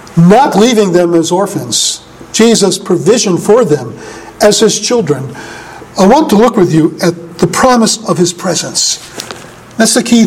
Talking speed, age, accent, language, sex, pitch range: 160 wpm, 50-69, American, English, male, 190-255 Hz